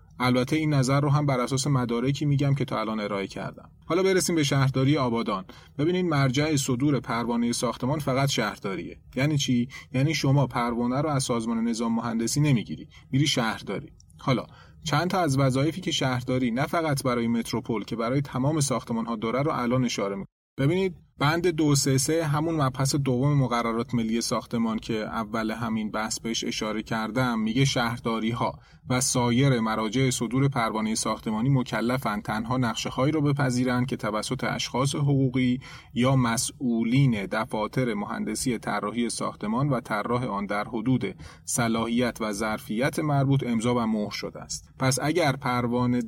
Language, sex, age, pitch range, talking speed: Persian, male, 30-49, 115-140 Hz, 150 wpm